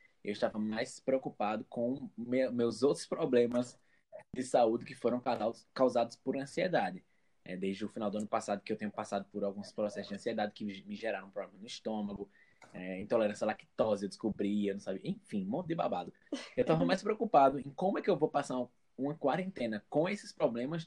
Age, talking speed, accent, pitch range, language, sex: 20-39, 190 wpm, Brazilian, 110-145 Hz, Portuguese, male